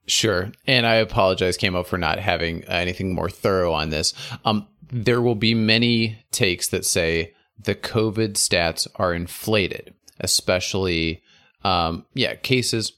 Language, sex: English, male